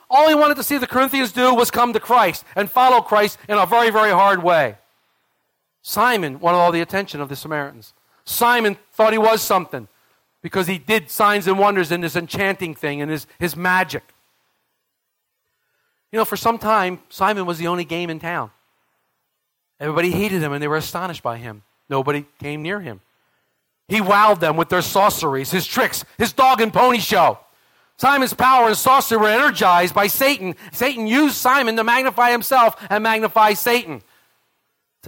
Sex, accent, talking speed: male, American, 180 wpm